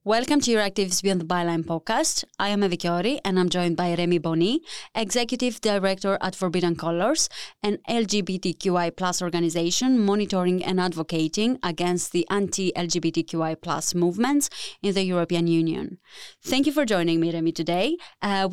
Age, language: 20-39, English